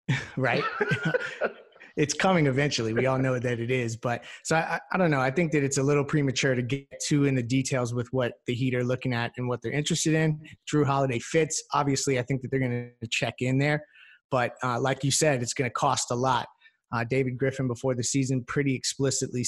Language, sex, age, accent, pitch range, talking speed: English, male, 30-49, American, 125-140 Hz, 225 wpm